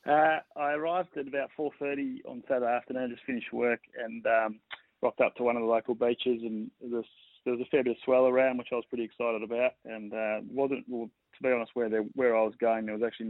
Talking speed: 250 wpm